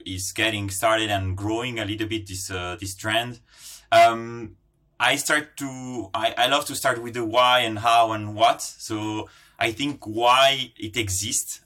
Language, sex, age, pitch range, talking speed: English, male, 30-49, 95-115 Hz, 175 wpm